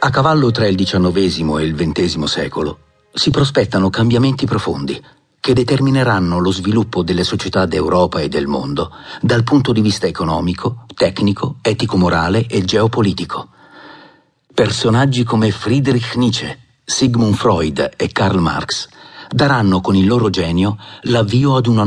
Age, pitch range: 50-69, 95-120 Hz